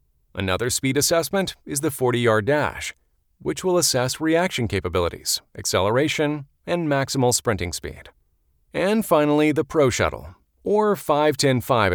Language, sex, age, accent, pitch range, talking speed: English, male, 40-59, American, 105-155 Hz, 120 wpm